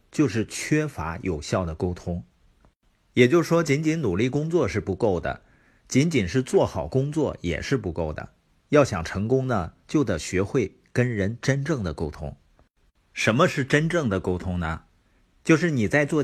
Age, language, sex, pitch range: 50-69, Chinese, male, 90-125 Hz